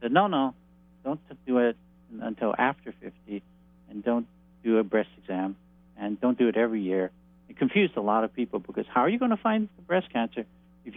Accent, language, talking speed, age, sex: American, English, 210 wpm, 50-69, male